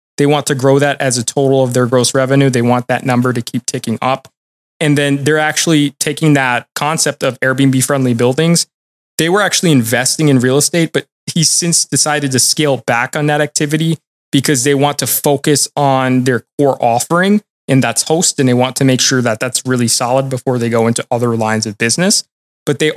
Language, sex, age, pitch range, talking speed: English, male, 20-39, 130-150 Hz, 205 wpm